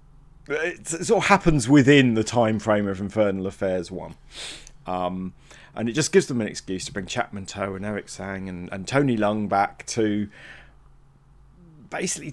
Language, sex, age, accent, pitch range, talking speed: English, male, 40-59, British, 95-130 Hz, 165 wpm